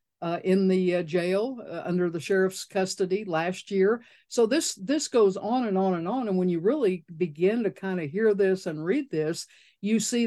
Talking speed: 210 wpm